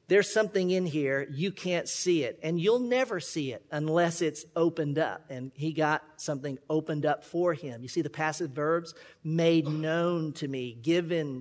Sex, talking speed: male, 185 wpm